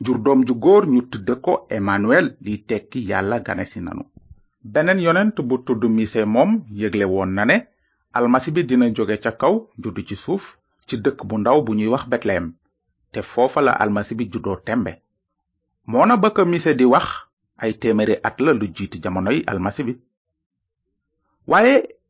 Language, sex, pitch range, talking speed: French, male, 105-170 Hz, 155 wpm